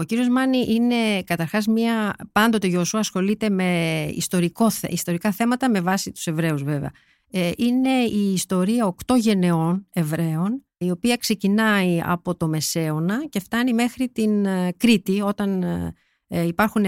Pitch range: 175-225 Hz